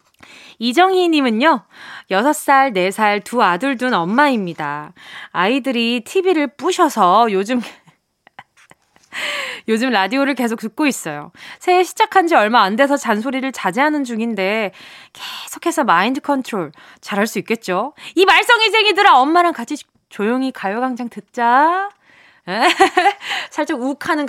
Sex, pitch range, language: female, 205-310 Hz, Korean